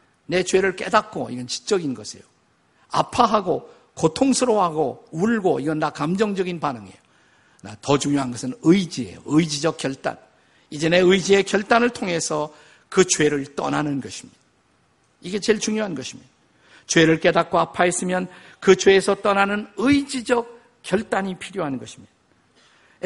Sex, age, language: male, 50-69, Korean